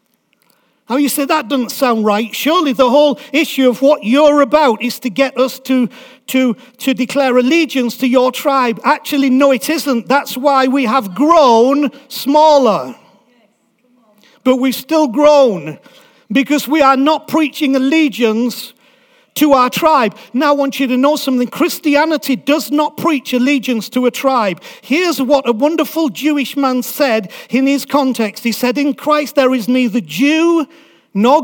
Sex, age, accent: male, 50-69, British